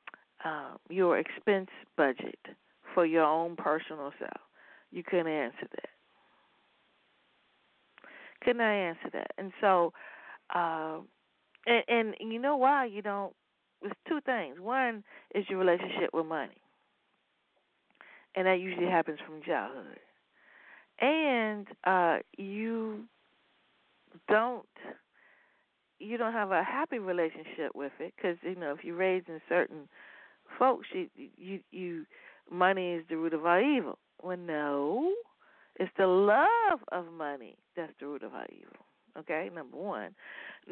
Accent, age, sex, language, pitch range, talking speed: American, 50-69, female, English, 160-220 Hz, 130 wpm